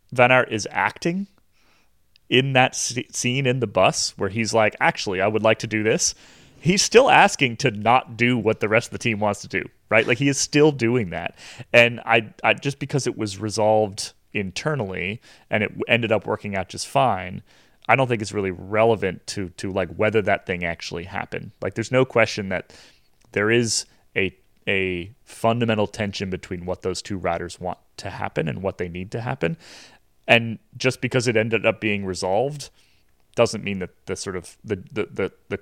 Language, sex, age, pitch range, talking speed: English, male, 30-49, 95-120 Hz, 195 wpm